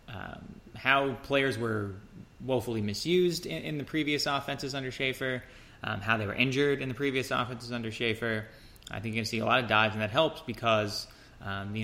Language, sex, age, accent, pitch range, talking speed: English, male, 30-49, American, 105-120 Hz, 205 wpm